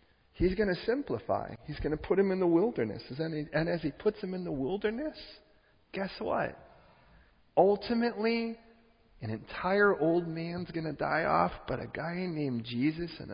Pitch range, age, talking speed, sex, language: 110-175 Hz, 40-59, 165 wpm, male, English